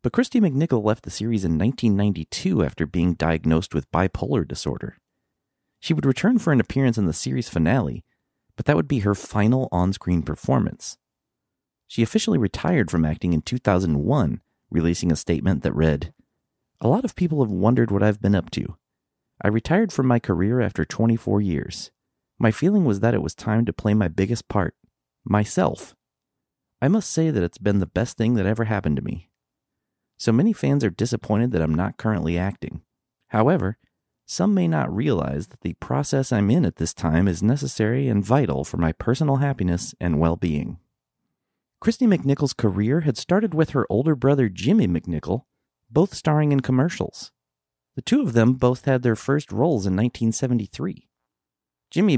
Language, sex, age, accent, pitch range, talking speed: English, male, 30-49, American, 90-135 Hz, 170 wpm